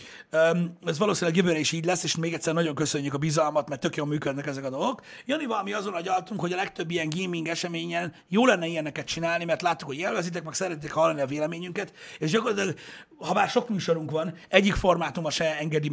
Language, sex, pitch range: Hungarian, male, 155-195 Hz